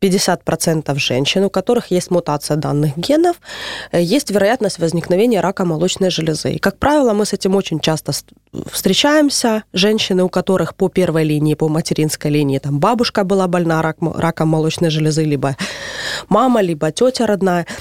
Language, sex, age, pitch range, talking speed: Russian, female, 20-39, 165-220 Hz, 140 wpm